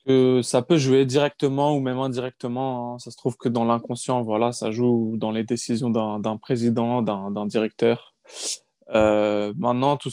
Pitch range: 120-145 Hz